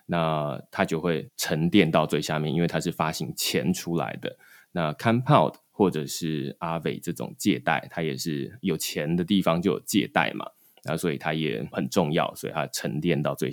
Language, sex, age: Chinese, male, 20-39